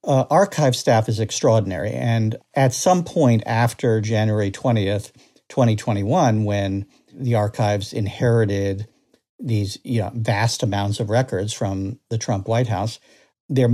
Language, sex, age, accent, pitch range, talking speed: English, male, 50-69, American, 105-130 Hz, 130 wpm